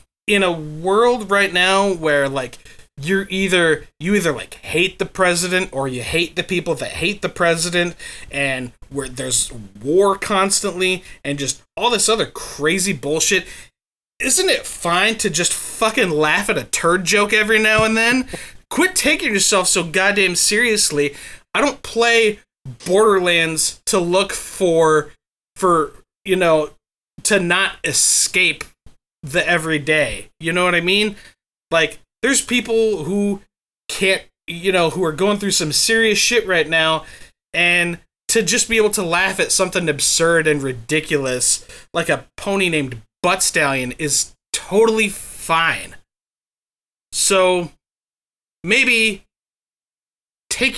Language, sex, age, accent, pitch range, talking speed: English, male, 20-39, American, 155-200 Hz, 140 wpm